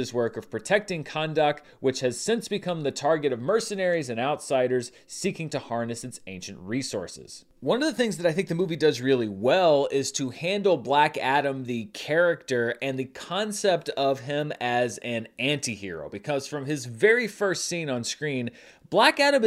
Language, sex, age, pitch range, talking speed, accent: English, male, 30-49, 125-185 Hz, 175 wpm, American